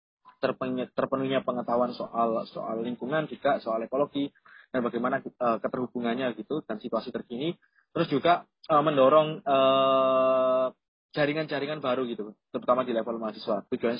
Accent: native